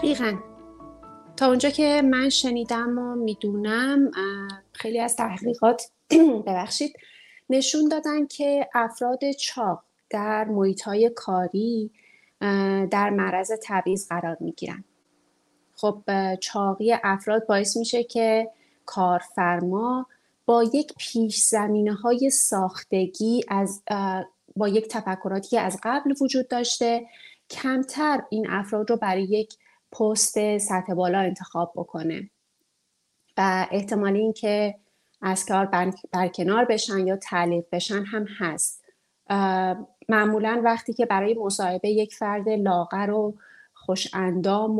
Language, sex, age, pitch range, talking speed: Persian, female, 30-49, 190-235 Hz, 105 wpm